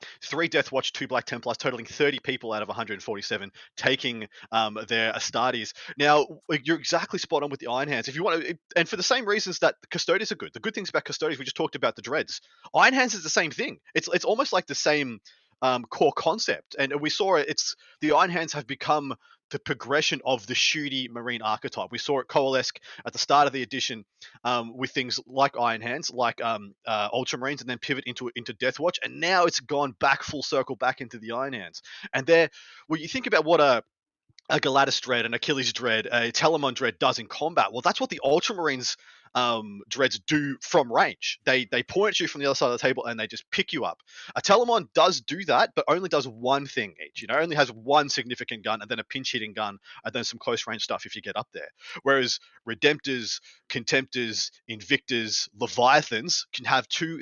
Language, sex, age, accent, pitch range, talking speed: English, male, 30-49, Australian, 120-155 Hz, 220 wpm